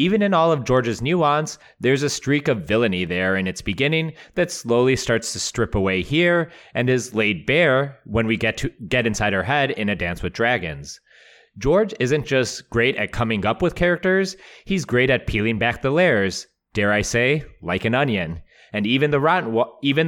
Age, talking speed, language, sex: 30-49, 195 wpm, English, male